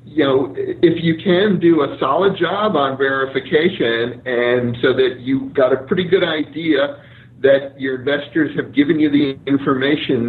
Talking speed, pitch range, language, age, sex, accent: 165 wpm, 135-165 Hz, English, 50-69, male, American